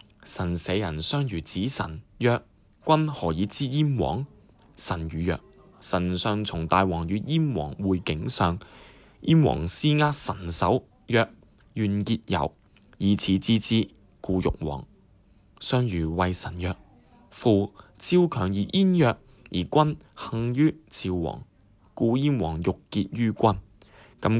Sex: male